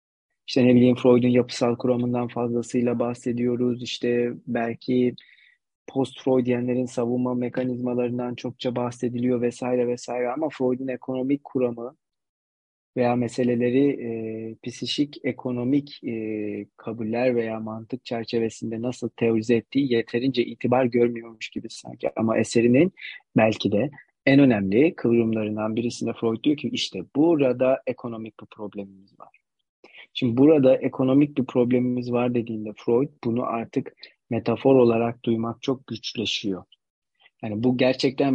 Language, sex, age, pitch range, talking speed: Turkish, male, 30-49, 115-125 Hz, 115 wpm